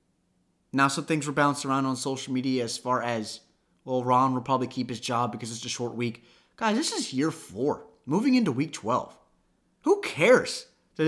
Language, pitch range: English, 130-205 Hz